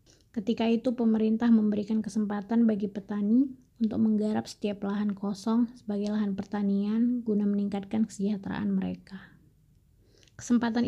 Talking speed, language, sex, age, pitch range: 110 wpm, Indonesian, female, 20-39, 195-225 Hz